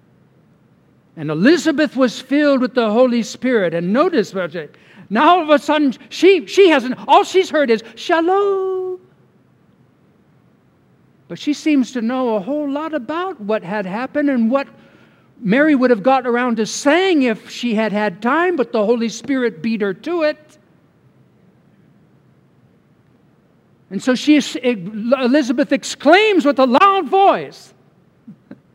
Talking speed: 140 wpm